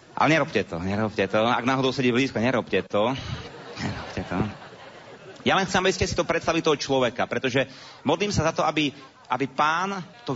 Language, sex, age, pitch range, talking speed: Slovak, male, 30-49, 105-150 Hz, 185 wpm